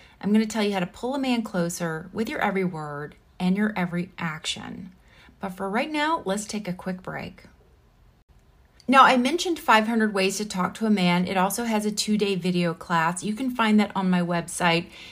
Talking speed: 205 wpm